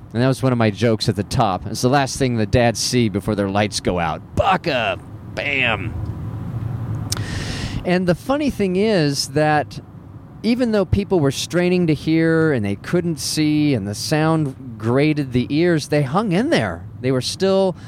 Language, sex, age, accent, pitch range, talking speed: English, male, 30-49, American, 110-155 Hz, 180 wpm